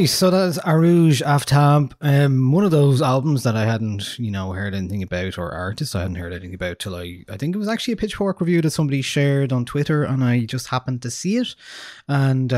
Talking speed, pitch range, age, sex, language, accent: 225 wpm, 100-135 Hz, 20-39, male, English, Irish